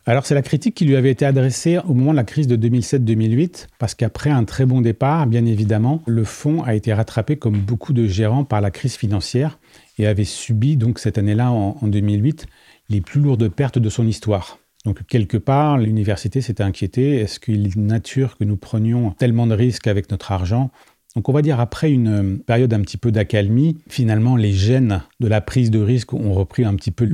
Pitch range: 105-130 Hz